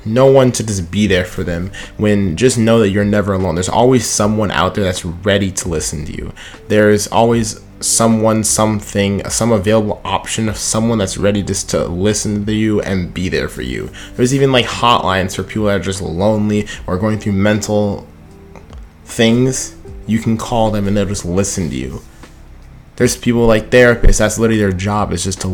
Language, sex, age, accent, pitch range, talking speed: English, male, 20-39, American, 90-110 Hz, 195 wpm